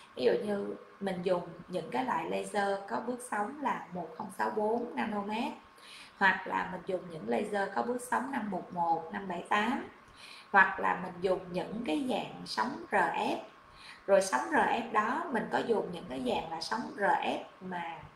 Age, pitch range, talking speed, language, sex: 20-39, 200-240 Hz, 160 wpm, Vietnamese, female